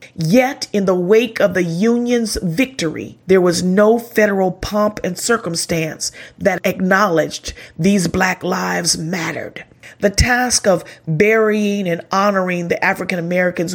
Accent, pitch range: American, 170-210 Hz